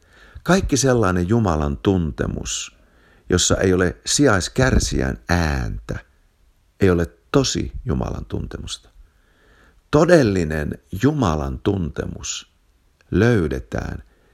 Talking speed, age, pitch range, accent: 75 wpm, 50-69, 75-115 Hz, native